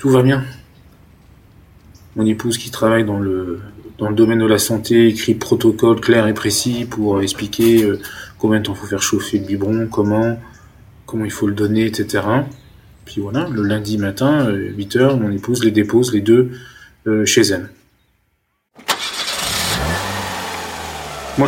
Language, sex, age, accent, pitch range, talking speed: French, male, 20-39, French, 100-120 Hz, 145 wpm